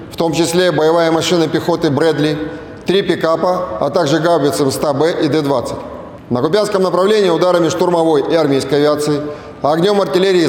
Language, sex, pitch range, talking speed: Russian, male, 145-175 Hz, 155 wpm